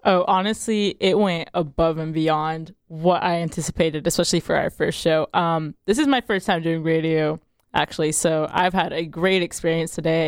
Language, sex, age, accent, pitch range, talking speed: English, female, 20-39, American, 160-190 Hz, 180 wpm